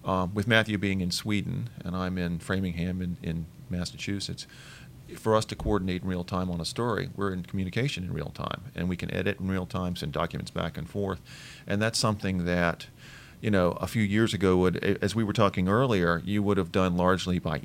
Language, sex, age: English, male, 40-59